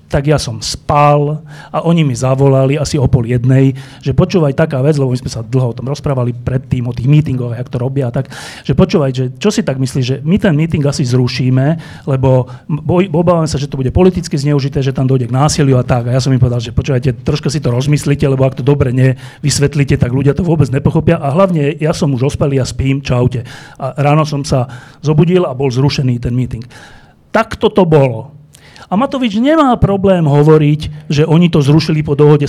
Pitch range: 135-160 Hz